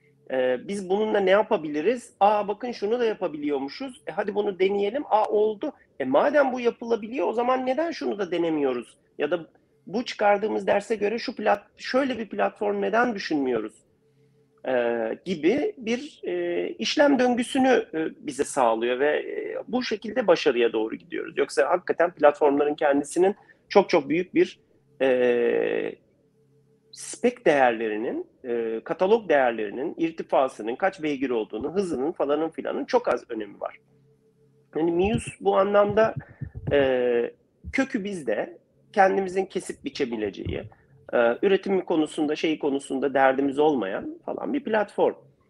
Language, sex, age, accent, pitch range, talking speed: Turkish, male, 40-59, native, 145-235 Hz, 130 wpm